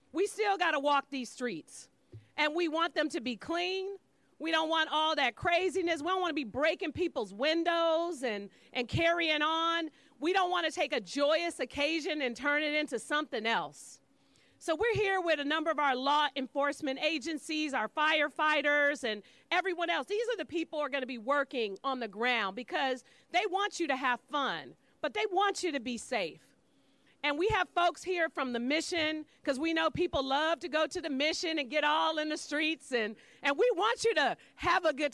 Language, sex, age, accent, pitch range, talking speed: English, female, 40-59, American, 275-350 Hz, 210 wpm